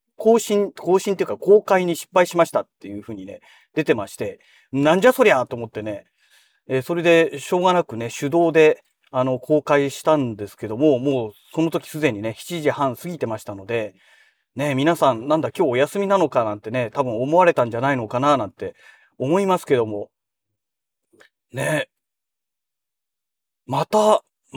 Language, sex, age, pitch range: Japanese, male, 30-49, 130-185 Hz